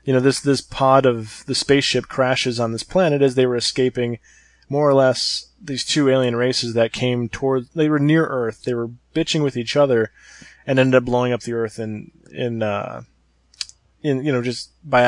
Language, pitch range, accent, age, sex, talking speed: English, 115-140 Hz, American, 20-39, male, 205 wpm